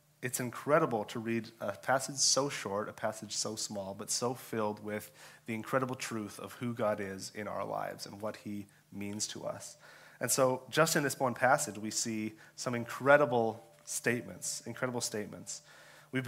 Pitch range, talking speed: 110-140 Hz, 175 wpm